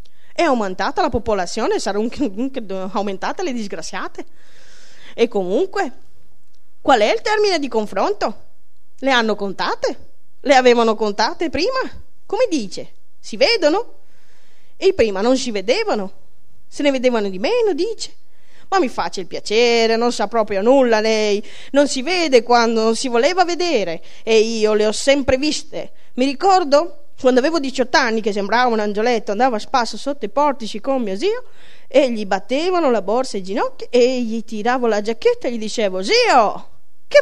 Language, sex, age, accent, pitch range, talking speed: Italian, female, 20-39, native, 220-350 Hz, 160 wpm